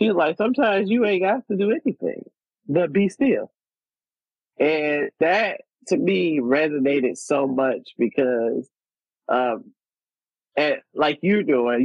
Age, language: 20-39, English